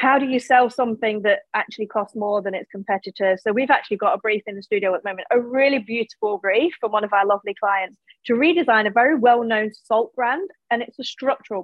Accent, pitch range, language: British, 205-255 Hz, English